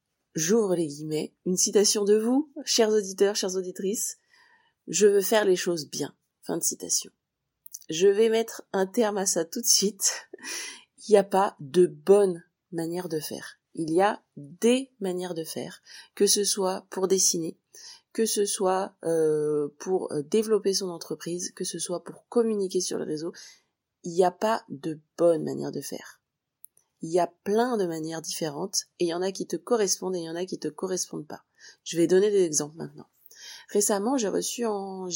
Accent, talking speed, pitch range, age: French, 185 wpm, 170-215 Hz, 30-49